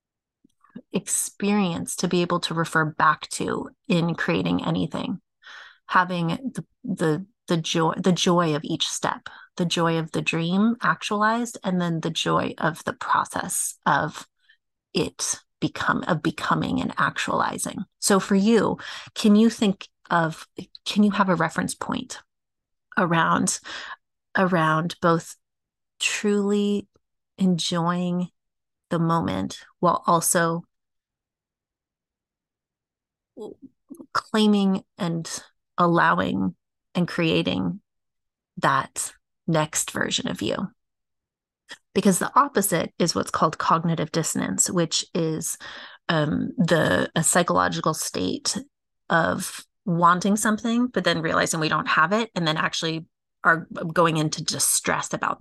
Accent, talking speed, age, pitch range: American, 115 wpm, 30-49, 165-210 Hz